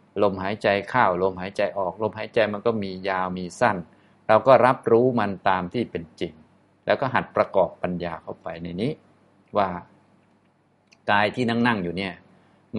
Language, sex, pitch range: Thai, male, 95-115 Hz